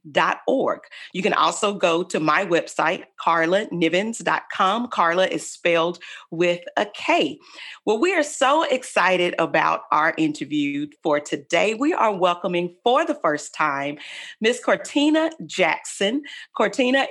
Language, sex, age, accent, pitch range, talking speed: English, female, 40-59, American, 175-285 Hz, 125 wpm